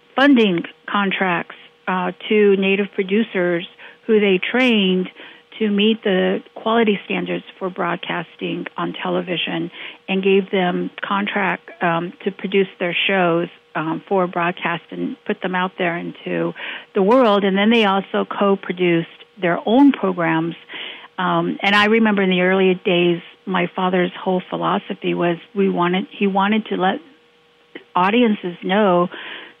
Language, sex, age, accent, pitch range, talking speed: English, female, 50-69, American, 180-210 Hz, 135 wpm